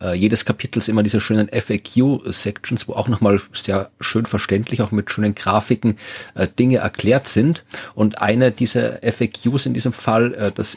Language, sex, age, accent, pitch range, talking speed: German, male, 40-59, German, 105-130 Hz, 165 wpm